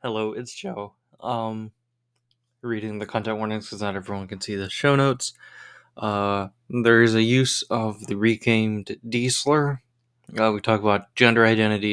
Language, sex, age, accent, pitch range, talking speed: English, male, 20-39, American, 105-125 Hz, 155 wpm